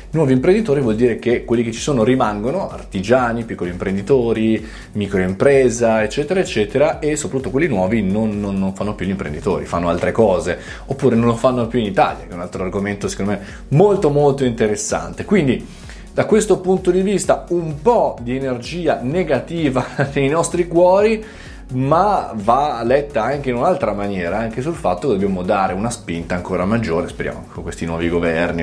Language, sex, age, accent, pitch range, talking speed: Italian, male, 20-39, native, 95-130 Hz, 175 wpm